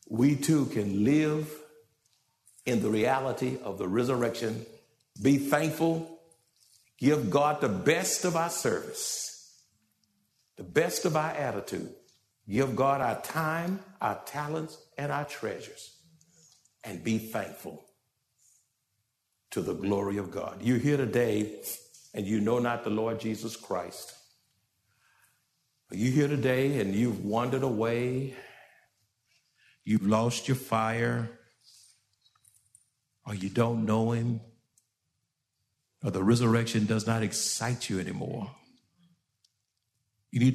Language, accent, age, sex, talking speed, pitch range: English, American, 60-79, male, 115 wpm, 110-140 Hz